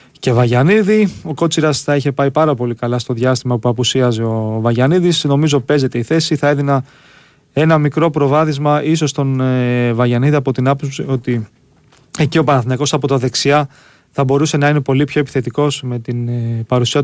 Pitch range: 125-150 Hz